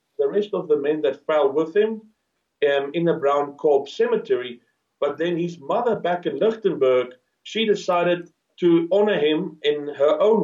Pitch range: 140-205 Hz